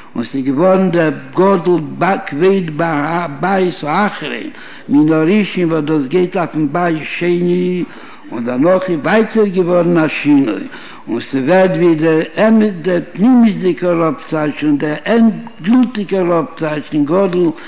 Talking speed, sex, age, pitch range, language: 95 wpm, male, 60-79, 165-205 Hz, Hebrew